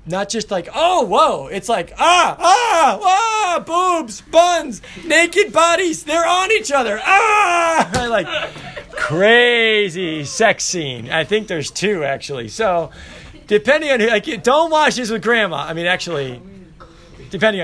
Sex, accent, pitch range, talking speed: male, American, 165-240 Hz, 150 wpm